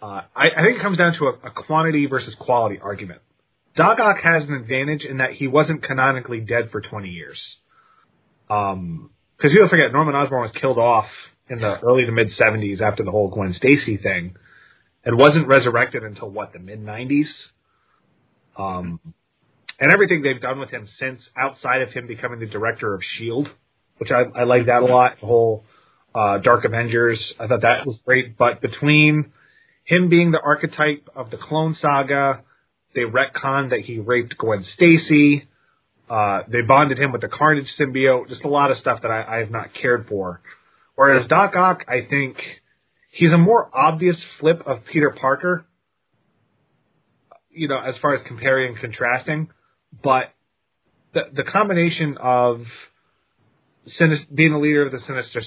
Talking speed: 170 wpm